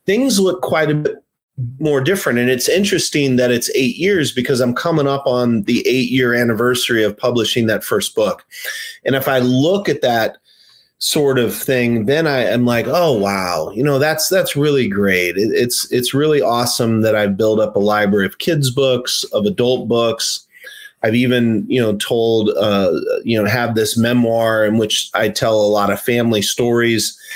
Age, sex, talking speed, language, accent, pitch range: 30-49, male, 185 wpm, English, American, 105-135 Hz